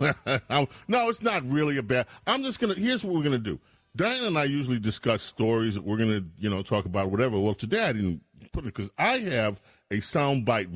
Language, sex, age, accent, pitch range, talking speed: English, male, 40-59, American, 95-125 Hz, 235 wpm